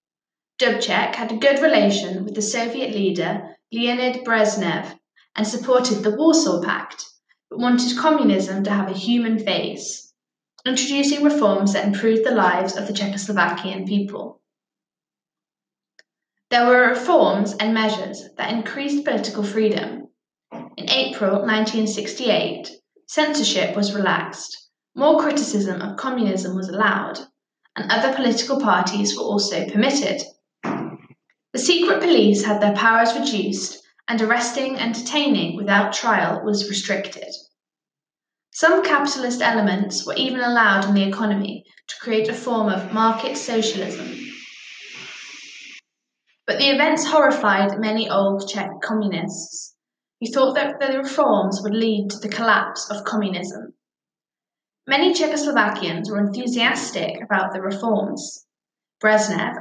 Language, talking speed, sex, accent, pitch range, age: English, 120 wpm, female, British, 200-260 Hz, 10-29